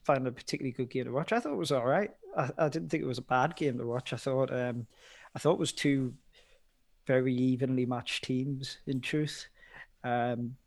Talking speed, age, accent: 220 wpm, 20-39, British